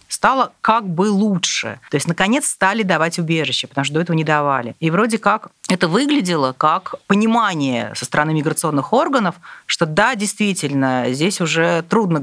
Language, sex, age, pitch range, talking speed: Russian, female, 30-49, 150-215 Hz, 160 wpm